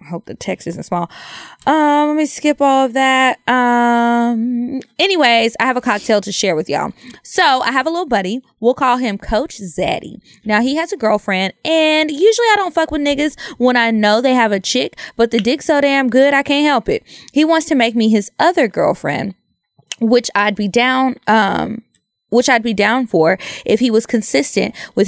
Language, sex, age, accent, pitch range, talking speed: English, female, 20-39, American, 205-265 Hz, 205 wpm